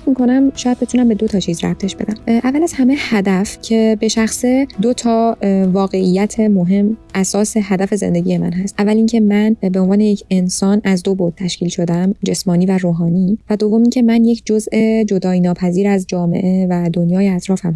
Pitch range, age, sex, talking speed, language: 195-235 Hz, 20-39, female, 180 wpm, Persian